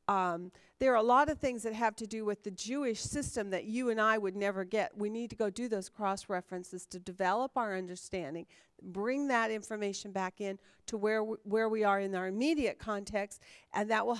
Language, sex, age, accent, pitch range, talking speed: English, female, 40-59, American, 205-255 Hz, 215 wpm